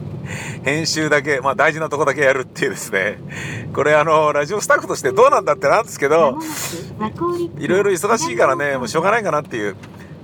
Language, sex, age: Japanese, male, 50-69